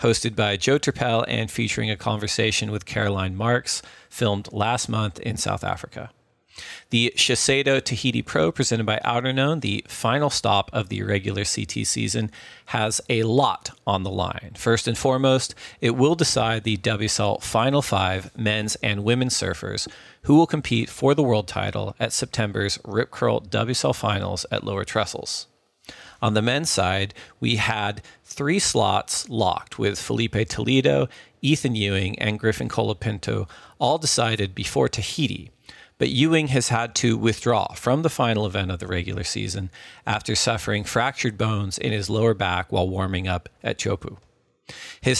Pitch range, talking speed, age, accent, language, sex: 105-125 Hz, 155 wpm, 40-59, American, English, male